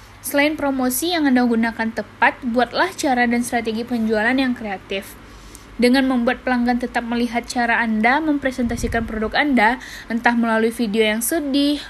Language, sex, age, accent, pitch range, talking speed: Indonesian, female, 10-29, native, 230-275 Hz, 140 wpm